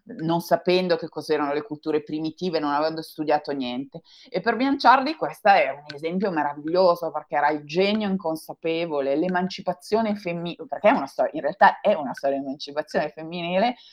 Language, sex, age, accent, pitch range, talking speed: Italian, female, 30-49, native, 145-175 Hz, 165 wpm